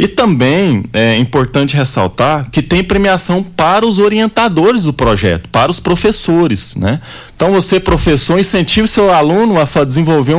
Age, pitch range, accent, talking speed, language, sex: 20-39, 120-170 Hz, Brazilian, 150 wpm, Portuguese, male